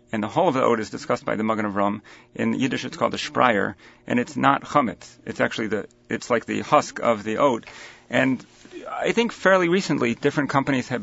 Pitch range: 110-130 Hz